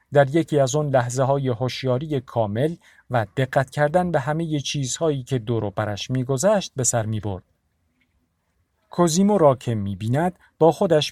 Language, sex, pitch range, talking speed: Persian, male, 110-160 Hz, 145 wpm